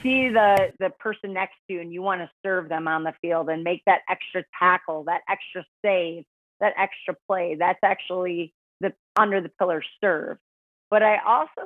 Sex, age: female, 30-49